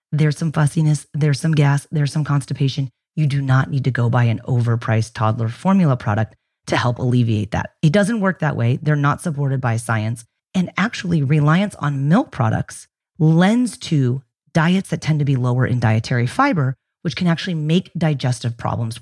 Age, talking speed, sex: 30-49, 185 wpm, female